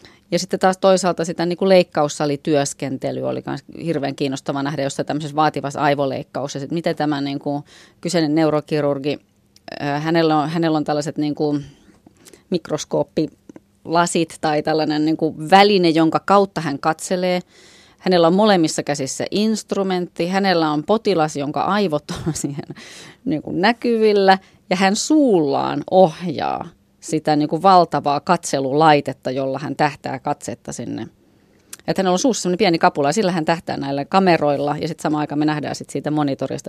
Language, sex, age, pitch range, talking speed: Finnish, female, 20-39, 145-175 Hz, 145 wpm